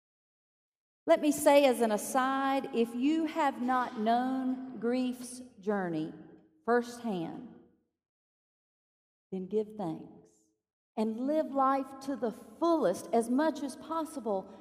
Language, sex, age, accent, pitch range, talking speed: English, female, 40-59, American, 220-280 Hz, 110 wpm